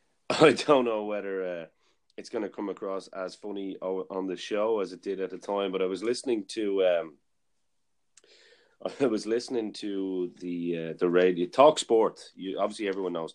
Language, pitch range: English, 90-105 Hz